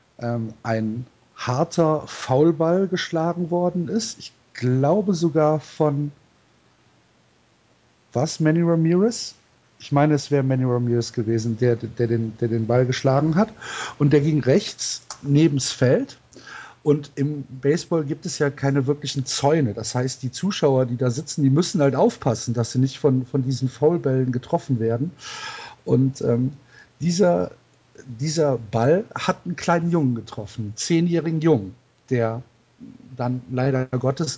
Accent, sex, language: German, male, German